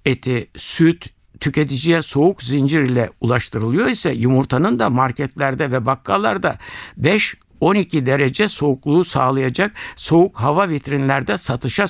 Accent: native